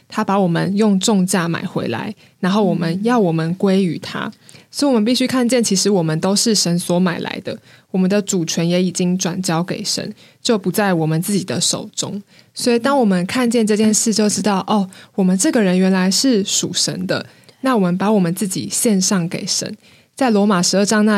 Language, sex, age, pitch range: Chinese, female, 20-39, 180-225 Hz